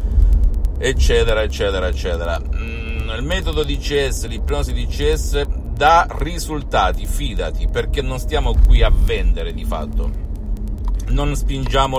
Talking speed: 120 wpm